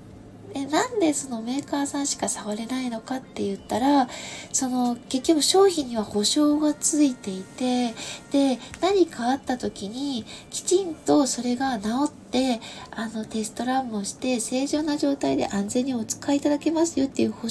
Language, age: Japanese, 20-39